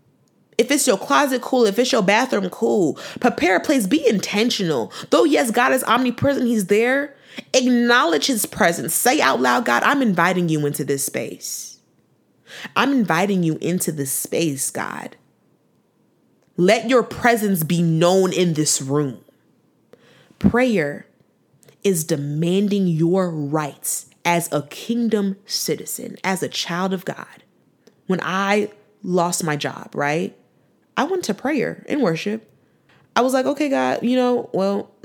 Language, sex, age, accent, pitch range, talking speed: English, female, 20-39, American, 165-240 Hz, 145 wpm